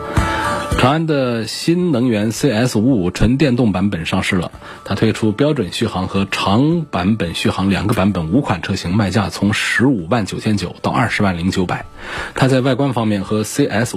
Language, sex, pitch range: Chinese, male, 95-120 Hz